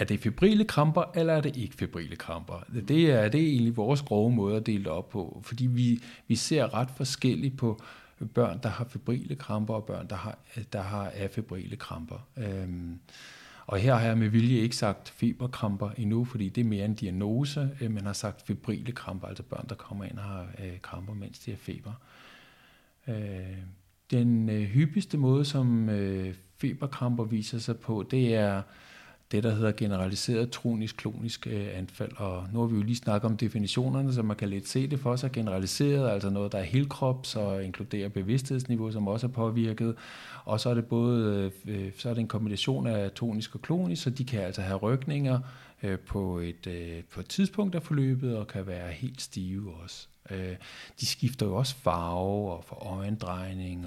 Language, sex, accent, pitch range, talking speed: Danish, male, native, 100-125 Hz, 180 wpm